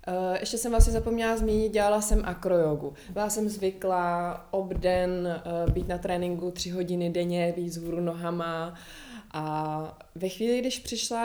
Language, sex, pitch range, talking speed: Czech, female, 175-215 Hz, 150 wpm